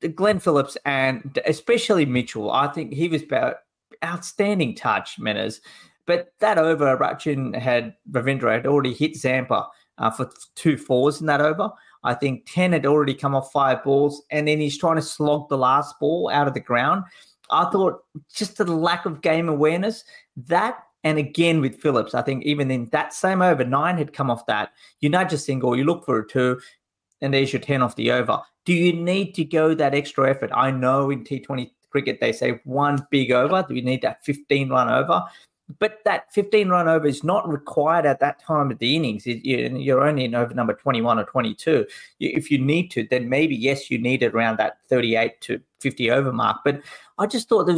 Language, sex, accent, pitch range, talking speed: English, male, Australian, 135-170 Hz, 200 wpm